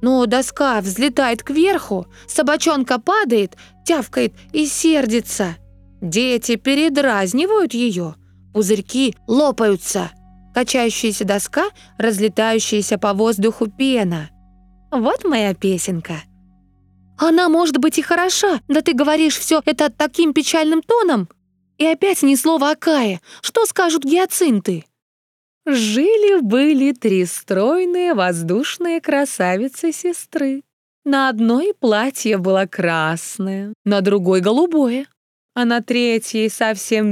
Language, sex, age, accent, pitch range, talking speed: Russian, female, 20-39, native, 190-300 Hz, 100 wpm